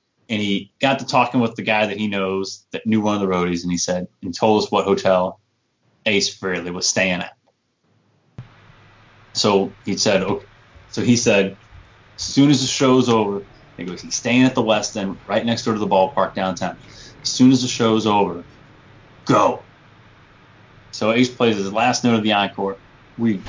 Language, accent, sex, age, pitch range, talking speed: English, American, male, 30-49, 100-125 Hz, 195 wpm